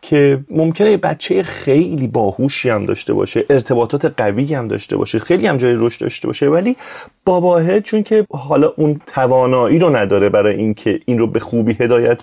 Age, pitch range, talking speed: 30-49, 135-210 Hz, 170 wpm